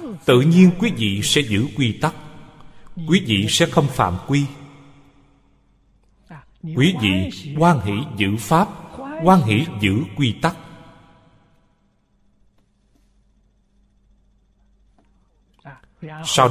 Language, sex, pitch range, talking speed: Vietnamese, male, 100-150 Hz, 95 wpm